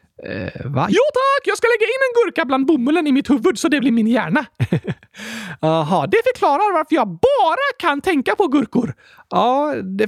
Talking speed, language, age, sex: 190 wpm, Swedish, 30-49, male